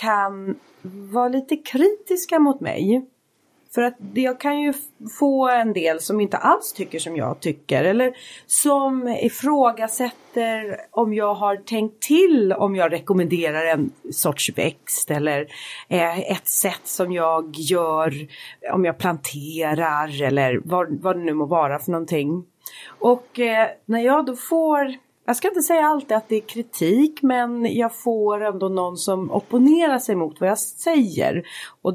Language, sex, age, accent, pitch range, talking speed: Swedish, female, 30-49, native, 180-255 Hz, 150 wpm